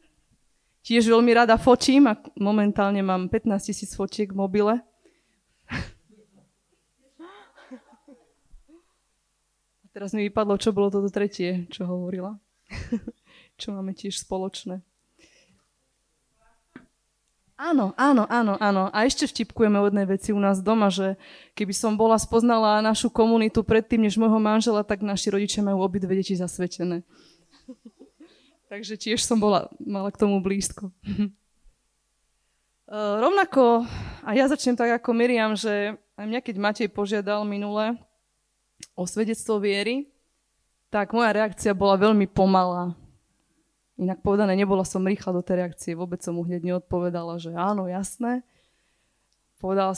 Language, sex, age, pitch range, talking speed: Slovak, female, 20-39, 195-230 Hz, 125 wpm